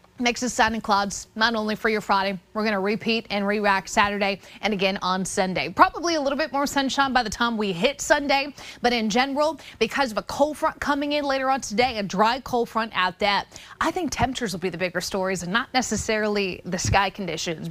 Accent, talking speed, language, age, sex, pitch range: American, 215 wpm, English, 20-39, female, 205-255 Hz